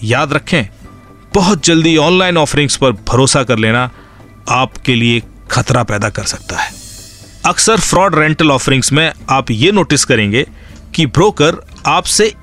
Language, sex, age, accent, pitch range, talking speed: Hindi, male, 40-59, native, 110-165 Hz, 140 wpm